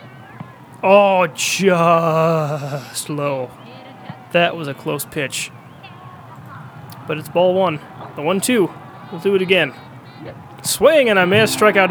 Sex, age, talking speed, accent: male, 20-39, 115 wpm, American